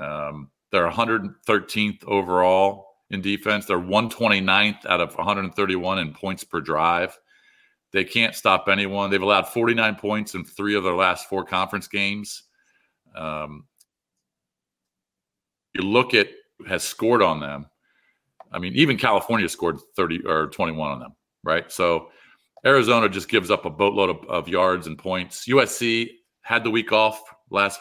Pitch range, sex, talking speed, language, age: 85-100 Hz, male, 145 wpm, English, 40-59